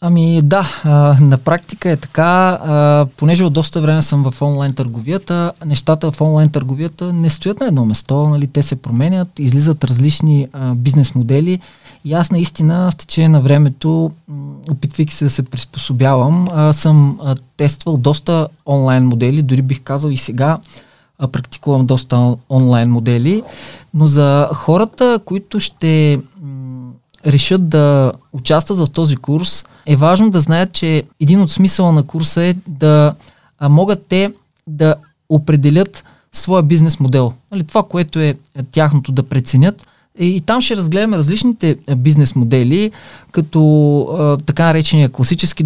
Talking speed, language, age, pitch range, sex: 135 wpm, Bulgarian, 20-39, 140-165 Hz, male